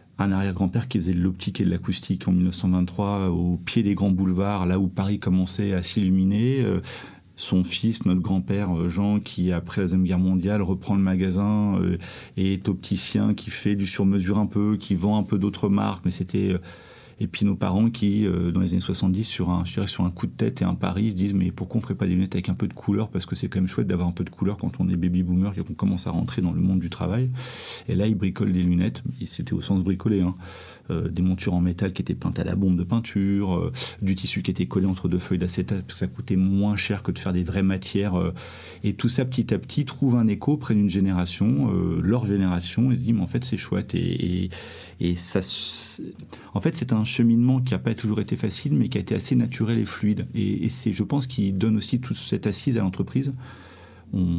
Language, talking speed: English, 245 wpm